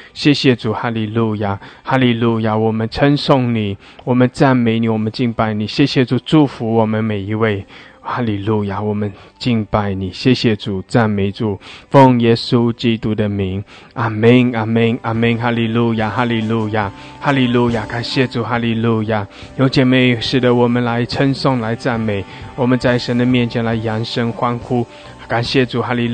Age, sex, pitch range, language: 20-39, male, 110-125 Hz, English